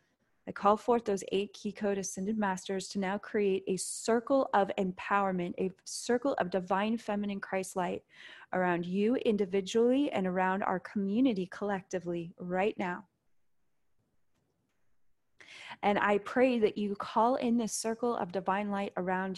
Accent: American